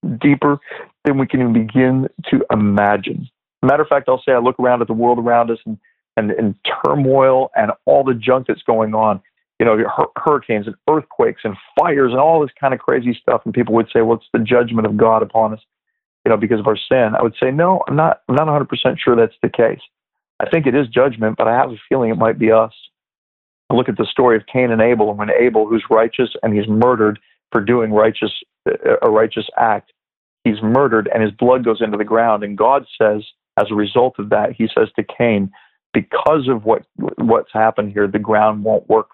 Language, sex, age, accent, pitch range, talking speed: English, male, 40-59, American, 110-130 Hz, 220 wpm